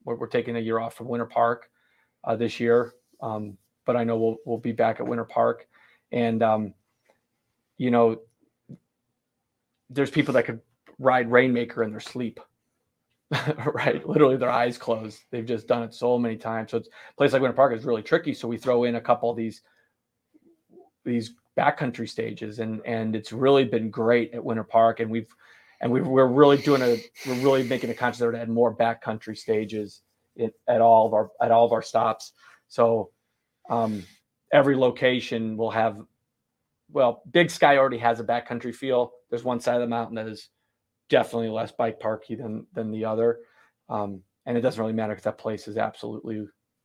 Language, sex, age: English, male, 30-49